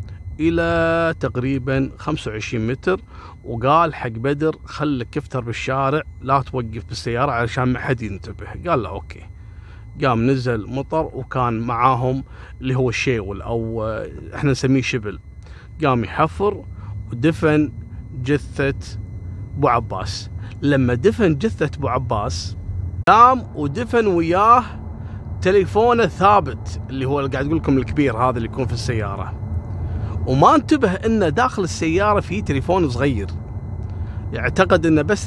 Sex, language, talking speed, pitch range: male, Arabic, 120 wpm, 100-155 Hz